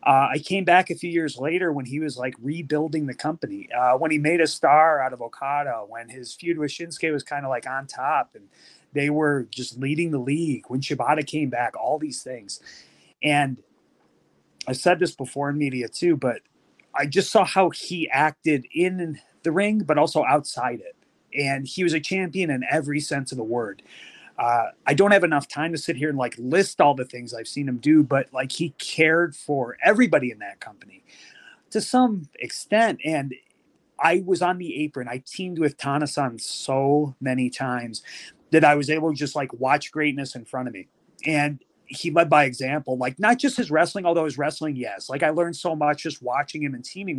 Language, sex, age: English, male, 30-49